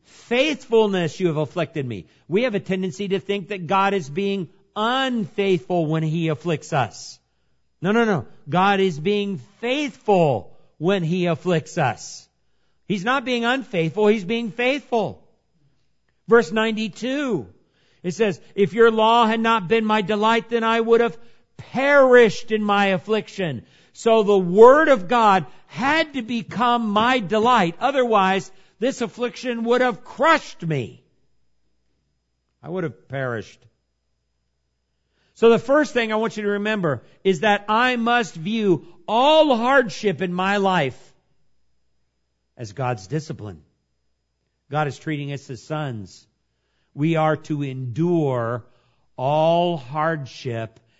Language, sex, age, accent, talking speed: English, male, 50-69, American, 135 wpm